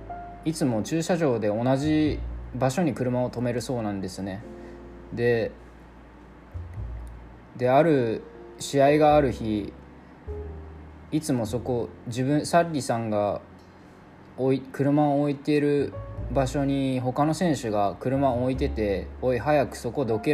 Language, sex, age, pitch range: Japanese, male, 20-39, 95-145 Hz